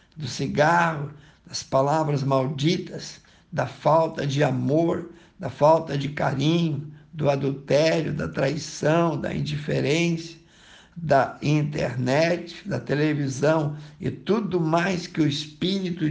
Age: 60-79